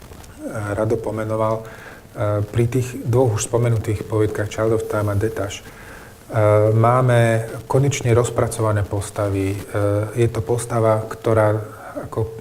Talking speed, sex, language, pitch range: 105 wpm, male, Slovak, 105-120 Hz